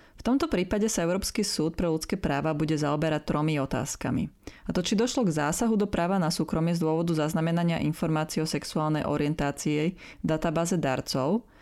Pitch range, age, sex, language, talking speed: 155-195 Hz, 20-39, female, Slovak, 170 wpm